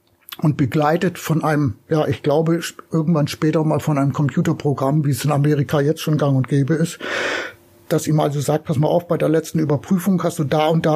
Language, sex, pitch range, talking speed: German, male, 145-170 Hz, 215 wpm